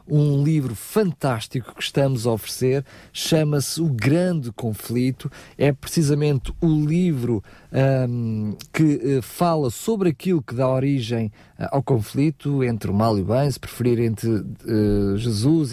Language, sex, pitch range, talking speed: Portuguese, male, 125-155 Hz, 130 wpm